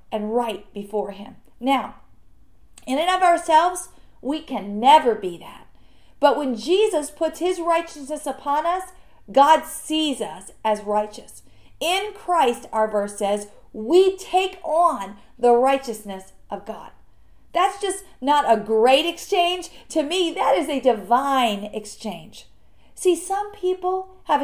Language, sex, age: English, female, 40-59